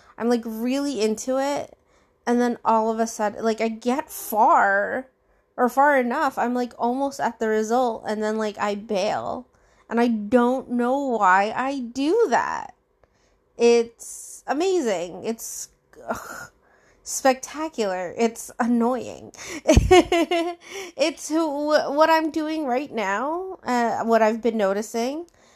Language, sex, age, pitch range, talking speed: English, female, 20-39, 210-260 Hz, 125 wpm